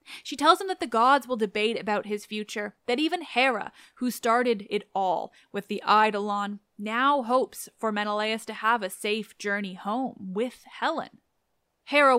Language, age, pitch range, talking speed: English, 10-29, 205-275 Hz, 165 wpm